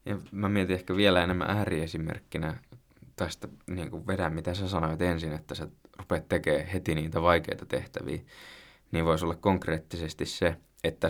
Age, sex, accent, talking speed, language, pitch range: 20-39, male, native, 150 wpm, Finnish, 85-95 Hz